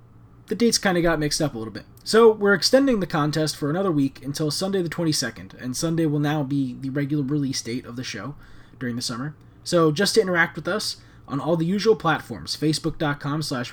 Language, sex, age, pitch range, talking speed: English, male, 20-39, 130-165 Hz, 220 wpm